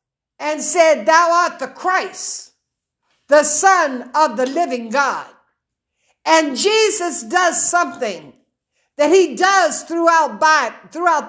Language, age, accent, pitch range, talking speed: English, 60-79, American, 285-370 Hz, 115 wpm